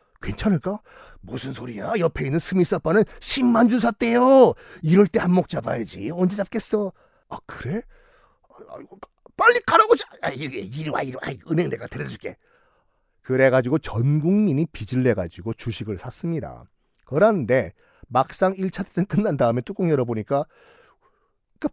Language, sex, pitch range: Korean, male, 120-195 Hz